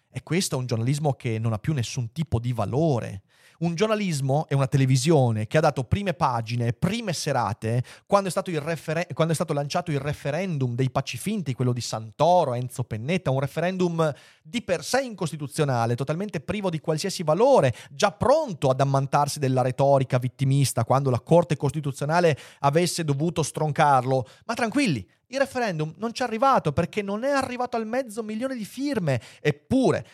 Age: 30-49